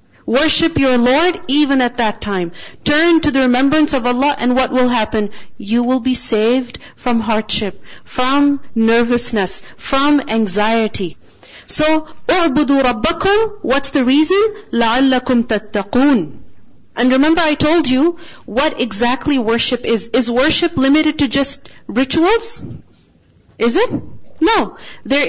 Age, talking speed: 40-59, 130 wpm